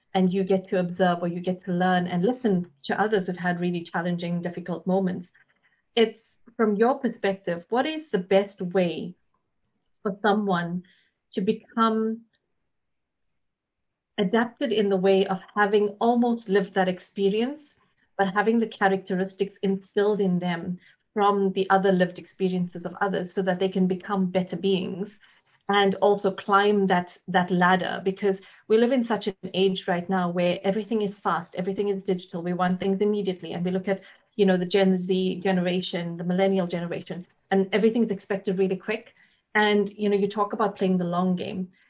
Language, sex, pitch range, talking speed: English, female, 185-205 Hz, 170 wpm